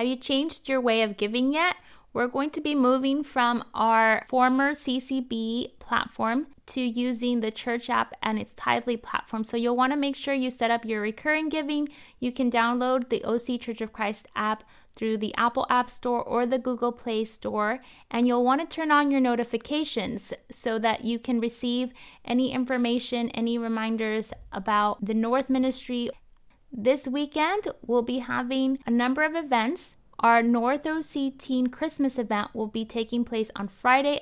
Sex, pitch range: female, 225-265 Hz